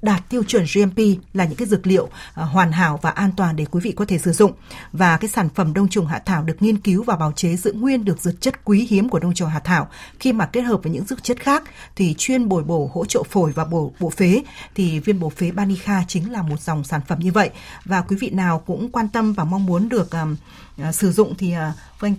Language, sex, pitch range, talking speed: Vietnamese, female, 170-210 Hz, 265 wpm